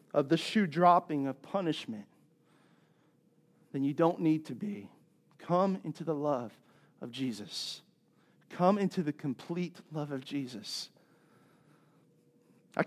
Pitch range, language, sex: 160-200 Hz, English, male